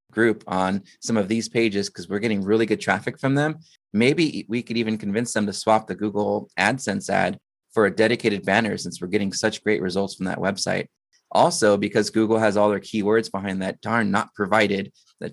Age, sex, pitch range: 20-39, male, 100-115 Hz